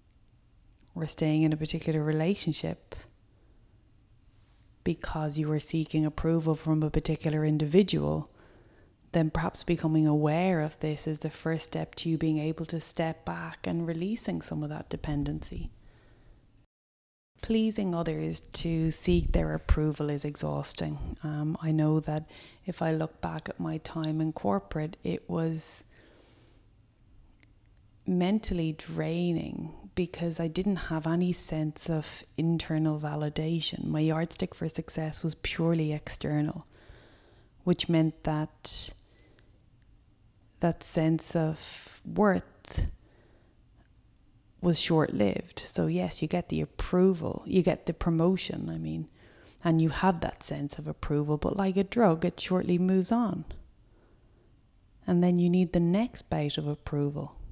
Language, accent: English, Irish